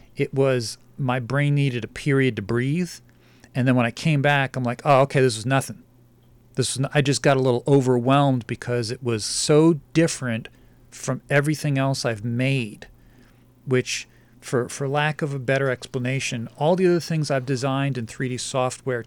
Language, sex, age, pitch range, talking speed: English, male, 40-59, 125-145 Hz, 185 wpm